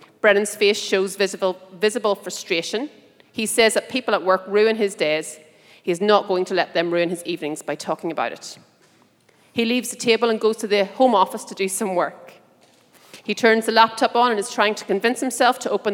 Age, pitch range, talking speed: 30-49, 180-225 Hz, 210 wpm